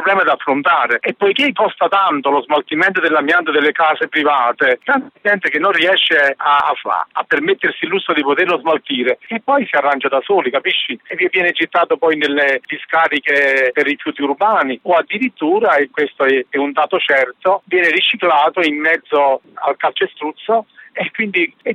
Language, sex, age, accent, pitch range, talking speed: Italian, male, 50-69, native, 150-230 Hz, 165 wpm